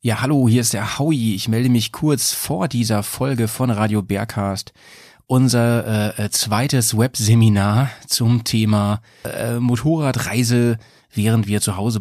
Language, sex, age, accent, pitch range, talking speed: German, male, 30-49, German, 105-125 Hz, 140 wpm